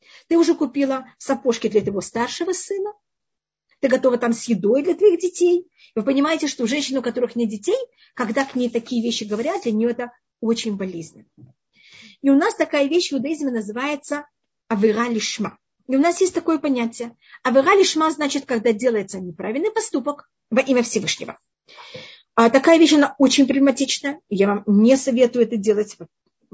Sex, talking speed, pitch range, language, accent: female, 165 wpm, 225-290 Hz, Russian, native